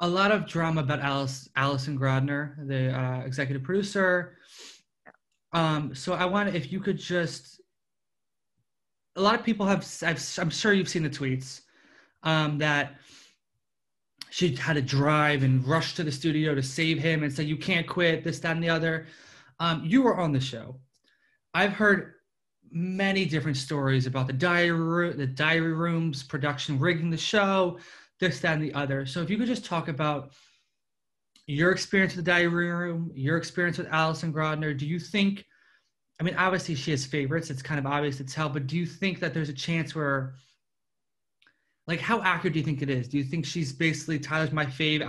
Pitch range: 145-175 Hz